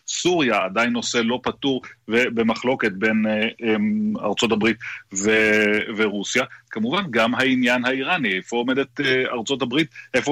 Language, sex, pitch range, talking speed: Hebrew, male, 110-130 Hz, 135 wpm